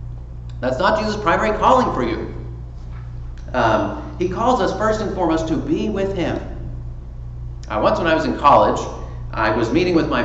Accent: American